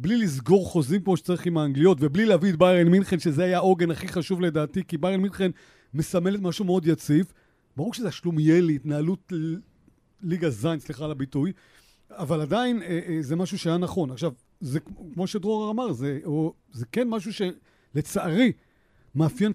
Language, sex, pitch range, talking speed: Hebrew, male, 155-185 Hz, 165 wpm